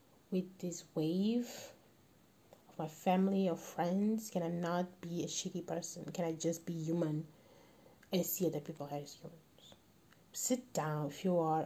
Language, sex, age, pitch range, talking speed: English, female, 30-49, 160-200 Hz, 160 wpm